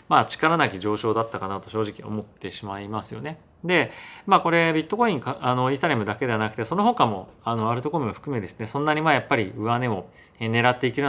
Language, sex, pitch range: Japanese, male, 110-150 Hz